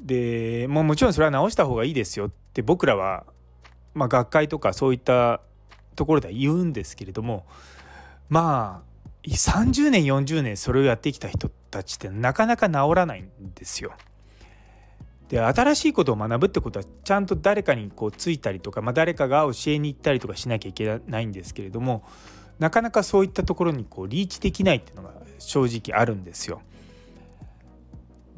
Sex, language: male, Japanese